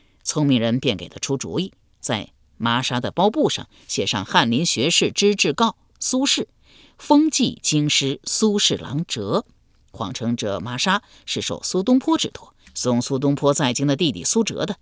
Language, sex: Chinese, female